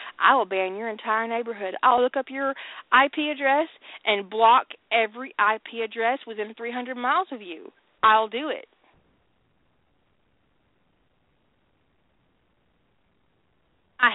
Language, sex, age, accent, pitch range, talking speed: English, female, 40-59, American, 215-265 Hz, 110 wpm